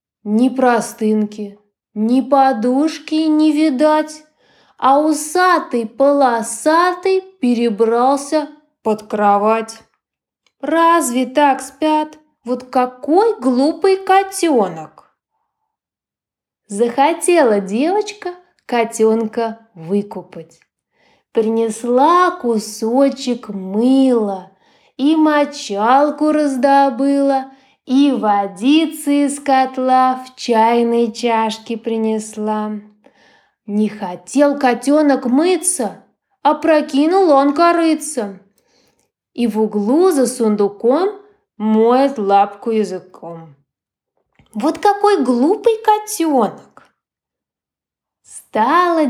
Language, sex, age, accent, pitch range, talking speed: Ukrainian, female, 20-39, native, 225-310 Hz, 70 wpm